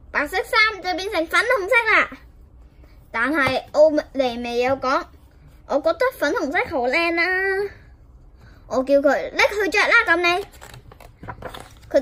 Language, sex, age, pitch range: Chinese, male, 10-29, 250-330 Hz